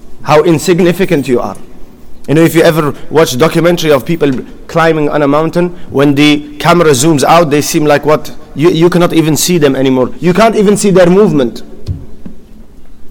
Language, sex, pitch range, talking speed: English, male, 160-205 Hz, 180 wpm